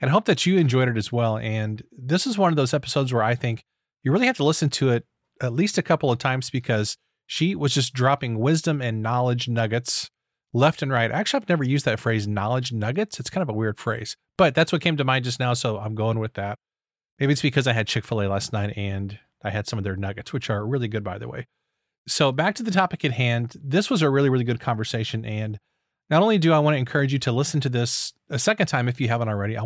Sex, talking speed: male, 260 wpm